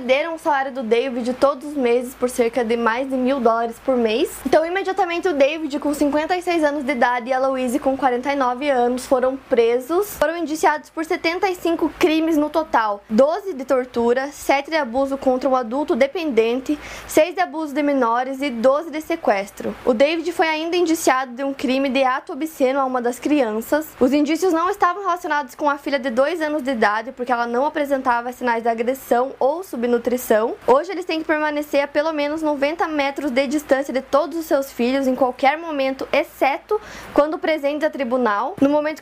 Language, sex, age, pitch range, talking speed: Portuguese, female, 20-39, 255-310 Hz, 190 wpm